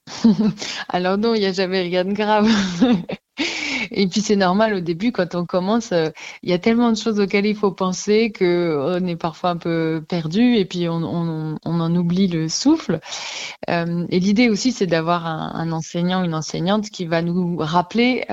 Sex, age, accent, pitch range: female, 20-39, French, 175-215 Hz